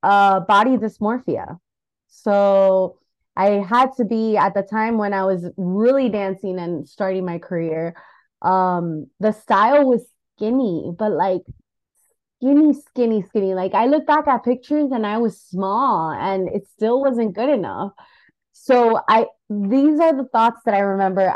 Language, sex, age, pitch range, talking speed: English, female, 20-39, 200-285 Hz, 155 wpm